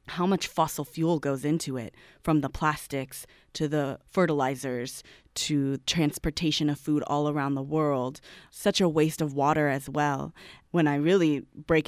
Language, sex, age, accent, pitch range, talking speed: English, female, 20-39, American, 145-160 Hz, 160 wpm